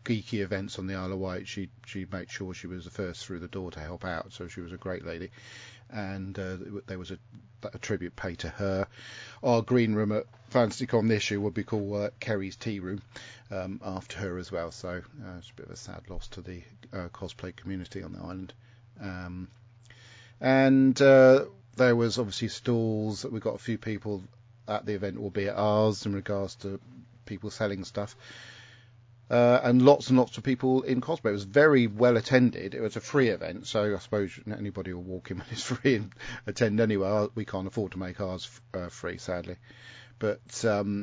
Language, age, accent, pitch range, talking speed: English, 40-59, British, 95-120 Hz, 205 wpm